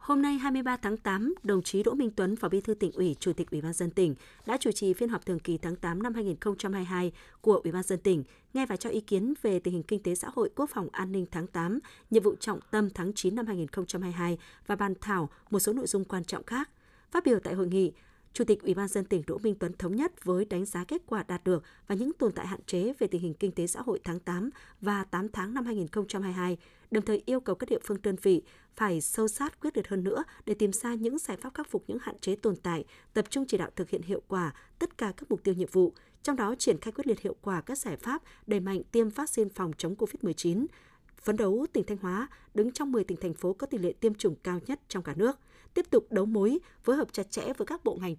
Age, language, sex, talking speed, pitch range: 20-39, Vietnamese, female, 265 wpm, 185-235 Hz